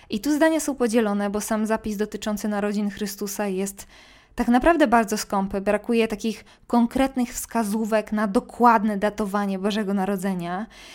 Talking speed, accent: 135 wpm, native